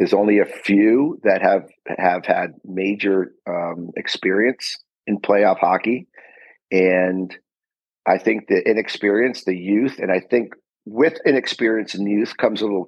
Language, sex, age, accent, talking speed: English, male, 40-59, American, 145 wpm